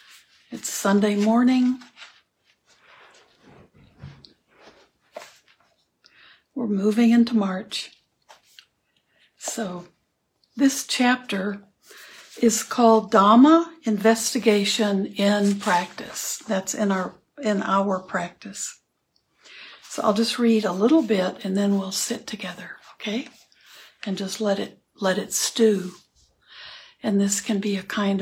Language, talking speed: English, 100 wpm